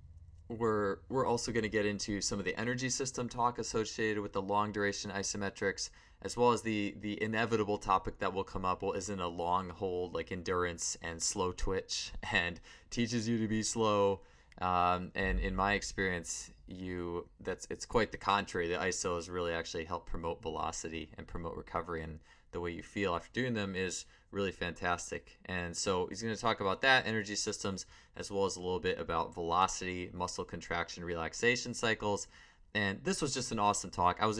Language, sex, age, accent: English, male, 20-39, American